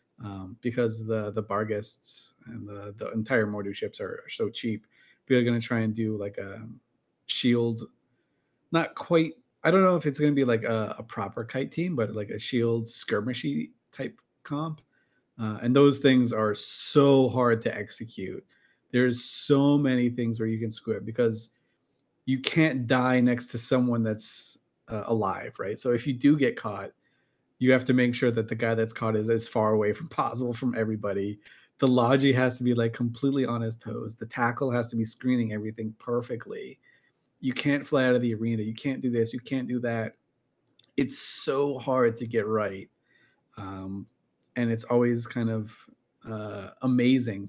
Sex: male